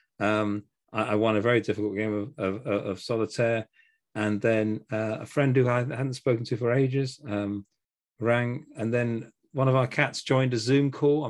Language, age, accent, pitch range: English, 40-59, British, 110-140 Hz